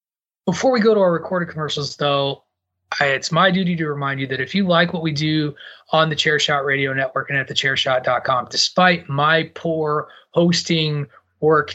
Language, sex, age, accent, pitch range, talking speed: English, male, 30-49, American, 145-190 Hz, 185 wpm